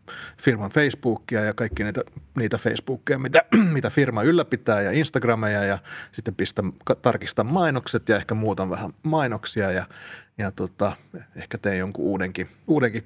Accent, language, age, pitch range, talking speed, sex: native, Finnish, 30-49, 105-130 Hz, 140 wpm, male